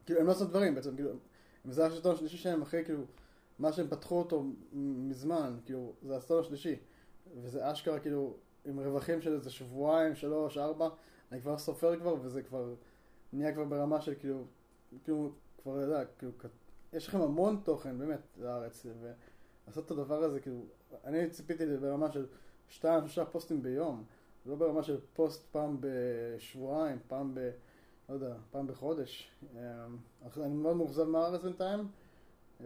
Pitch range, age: 135-165 Hz, 20-39